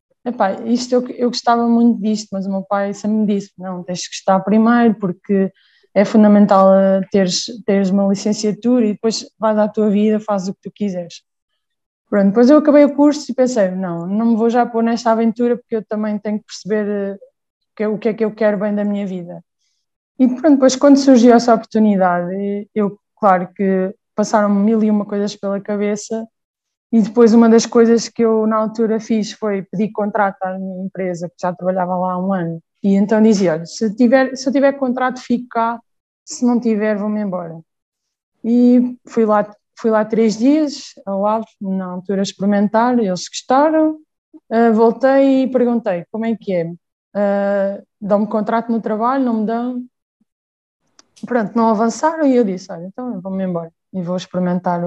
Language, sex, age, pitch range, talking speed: Portuguese, female, 20-39, 195-235 Hz, 185 wpm